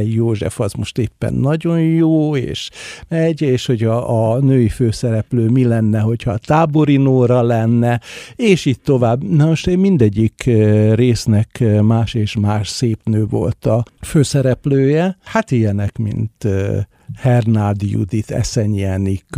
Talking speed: 130 wpm